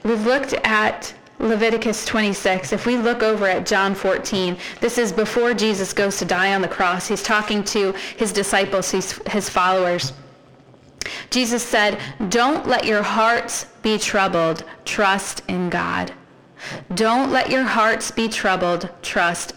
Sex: female